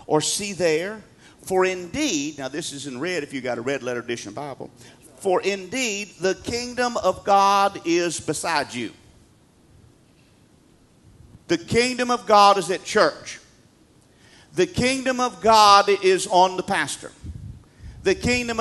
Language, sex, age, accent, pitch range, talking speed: English, male, 50-69, American, 165-235 Hz, 140 wpm